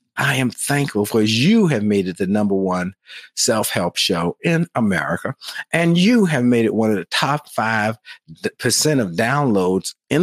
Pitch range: 105-140 Hz